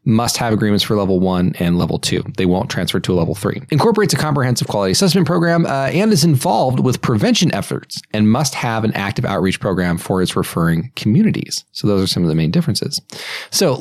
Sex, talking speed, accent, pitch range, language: male, 215 wpm, American, 105-145 Hz, English